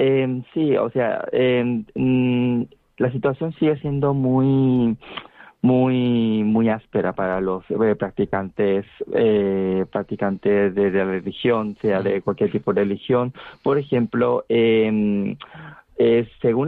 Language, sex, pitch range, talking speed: Spanish, male, 105-125 Hz, 120 wpm